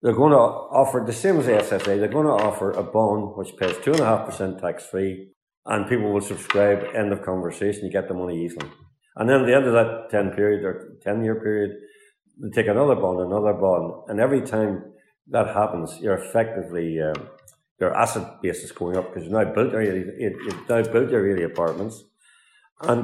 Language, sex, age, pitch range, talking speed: English, male, 50-69, 95-125 Hz, 180 wpm